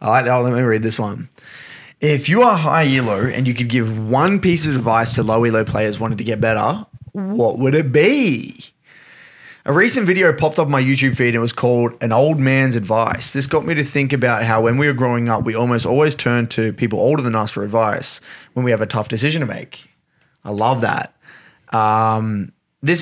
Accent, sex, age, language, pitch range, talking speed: Australian, male, 20-39, English, 115-145 Hz, 225 wpm